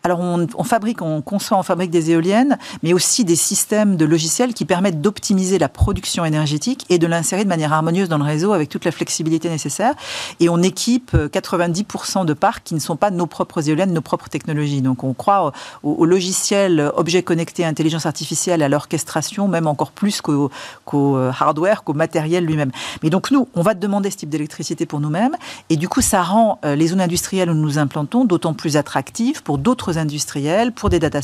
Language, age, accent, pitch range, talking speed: French, 50-69, French, 150-185 Hz, 200 wpm